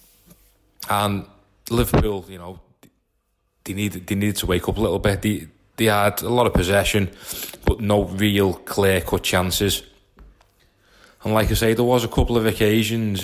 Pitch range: 90-105 Hz